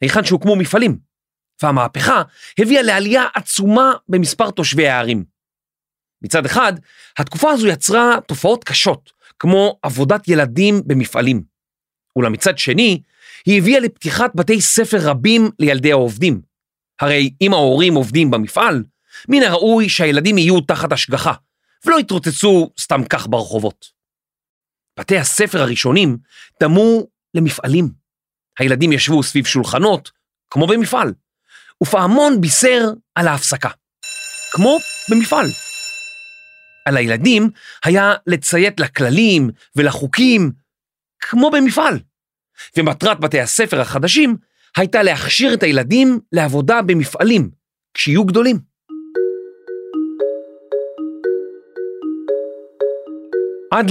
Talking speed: 95 wpm